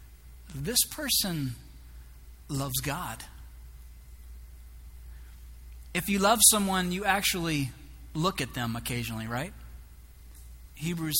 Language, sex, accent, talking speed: English, male, American, 85 wpm